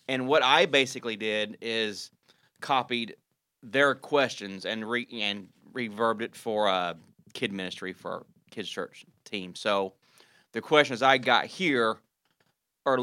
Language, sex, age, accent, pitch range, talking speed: English, male, 30-49, American, 105-125 Hz, 140 wpm